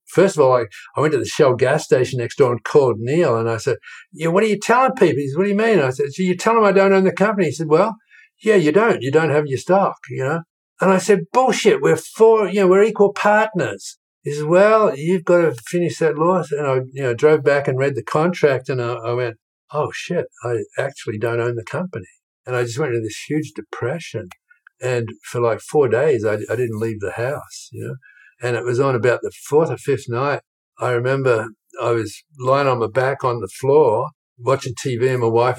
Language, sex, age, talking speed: English, male, 60-79, 245 wpm